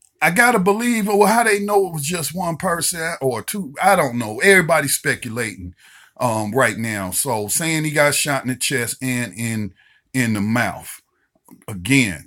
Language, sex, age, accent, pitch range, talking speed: English, male, 40-59, American, 105-145 Hz, 175 wpm